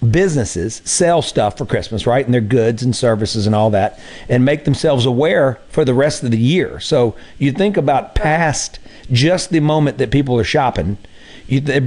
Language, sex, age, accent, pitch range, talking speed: English, male, 50-69, American, 115-150 Hz, 185 wpm